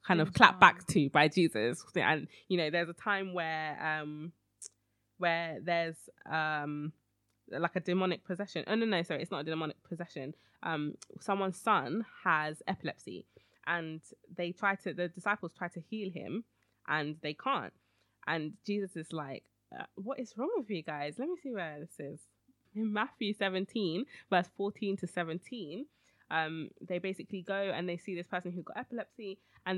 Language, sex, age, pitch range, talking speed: English, female, 20-39, 155-195 Hz, 170 wpm